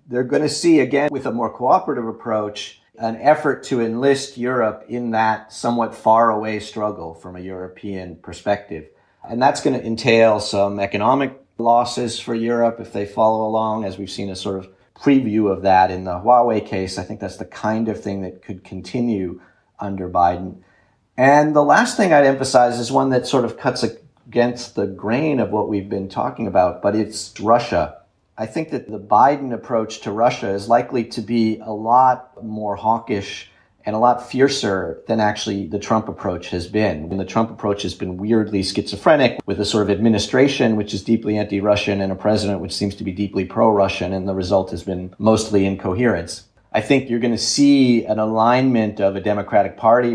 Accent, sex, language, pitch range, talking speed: American, male, English, 100-120 Hz, 190 wpm